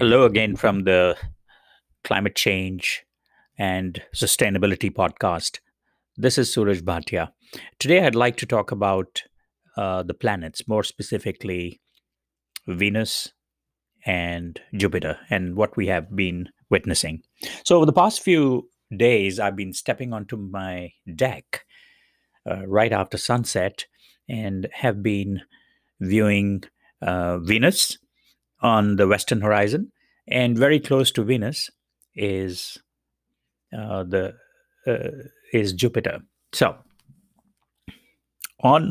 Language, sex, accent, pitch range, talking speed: English, male, Indian, 95-120 Hz, 110 wpm